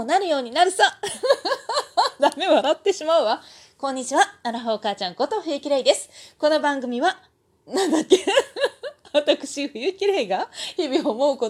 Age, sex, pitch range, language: 20-39, female, 265-430 Hz, Japanese